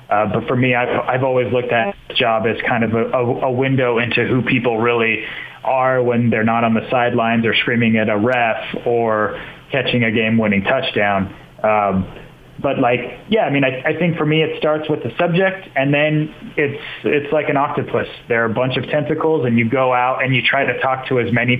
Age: 30-49